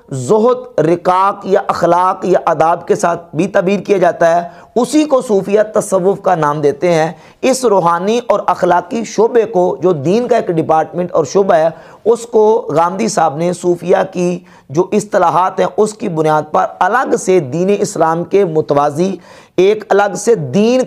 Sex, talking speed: male, 170 wpm